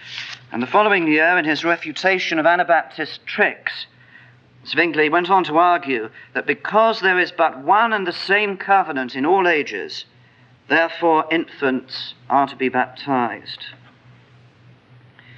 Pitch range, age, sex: 135-195 Hz, 40-59, male